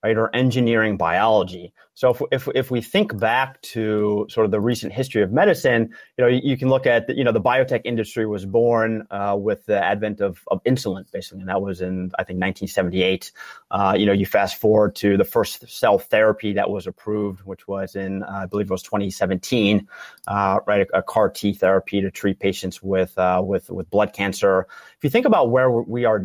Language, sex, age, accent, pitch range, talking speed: English, male, 30-49, American, 100-130 Hz, 215 wpm